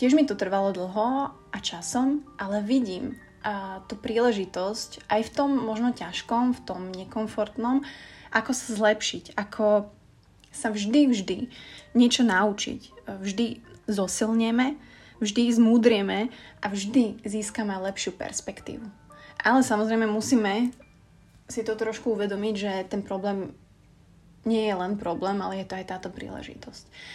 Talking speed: 130 wpm